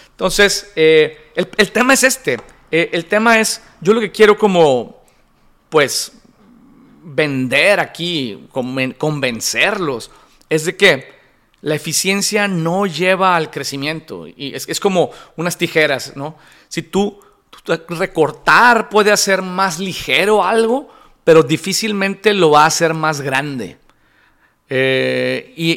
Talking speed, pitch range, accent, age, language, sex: 130 wpm, 140-190 Hz, Mexican, 40-59, Spanish, male